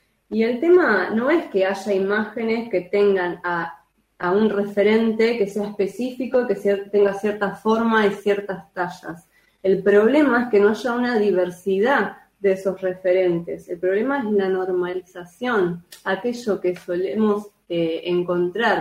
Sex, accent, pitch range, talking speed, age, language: female, Argentinian, 185-220 Hz, 145 wpm, 20-39, Spanish